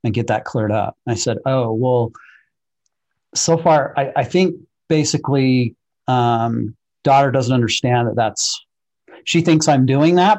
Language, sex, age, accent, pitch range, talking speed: English, male, 40-59, American, 120-145 Hz, 155 wpm